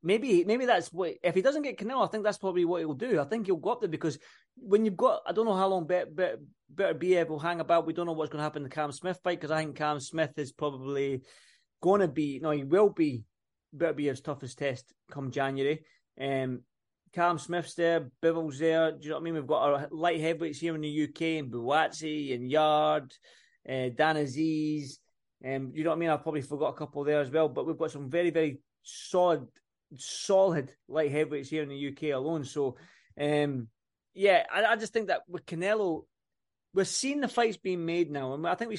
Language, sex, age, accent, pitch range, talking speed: English, male, 20-39, British, 145-185 Hz, 235 wpm